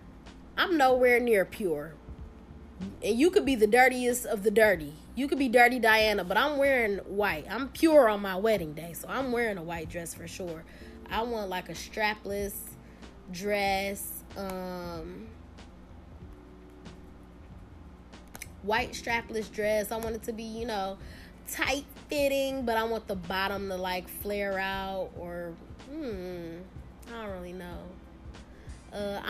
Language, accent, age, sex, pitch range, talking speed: English, American, 20-39, female, 190-235 Hz, 145 wpm